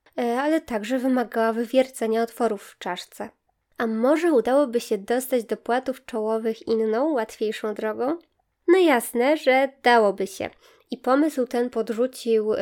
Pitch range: 220-265 Hz